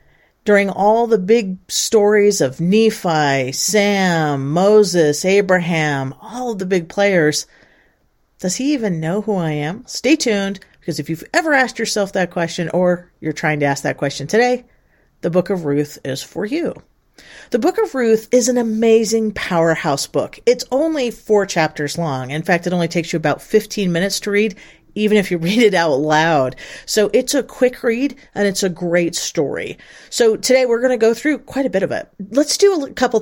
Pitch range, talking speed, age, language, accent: 160-225 Hz, 190 wpm, 40-59, English, American